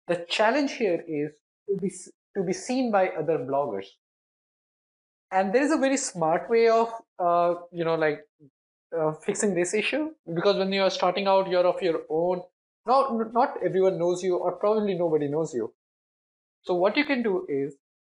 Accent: Indian